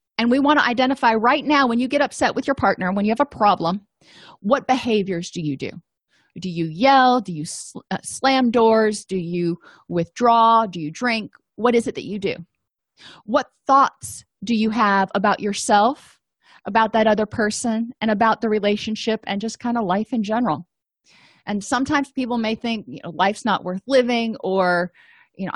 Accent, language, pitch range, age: American, English, 195-250 Hz, 30-49